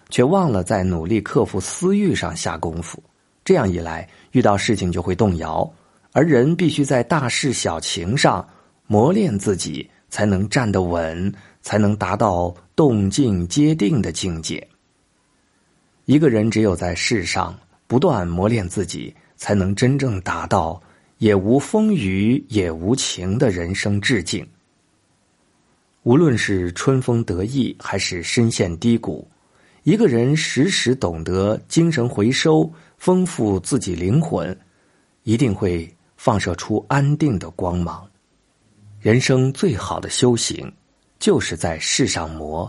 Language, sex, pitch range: Chinese, male, 90-130 Hz